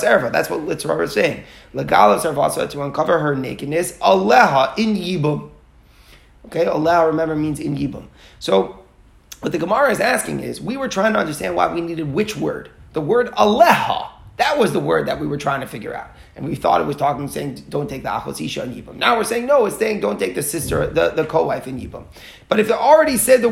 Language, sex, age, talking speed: English, male, 30-49, 220 wpm